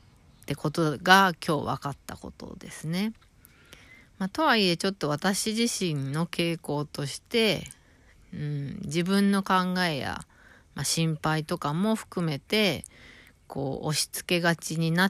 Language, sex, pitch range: Japanese, female, 145-185 Hz